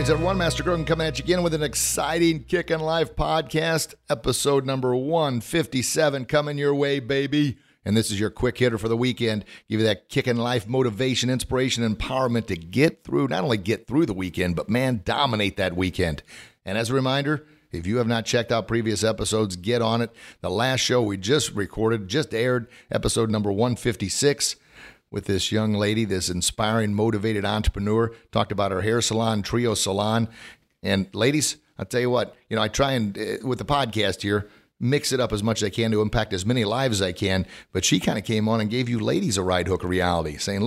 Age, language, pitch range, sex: 50-69, English, 105-130 Hz, male